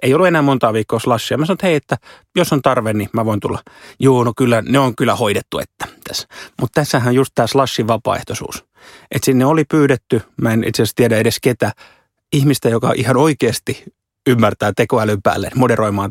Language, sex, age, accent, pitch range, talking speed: Finnish, male, 30-49, native, 115-150 Hz, 195 wpm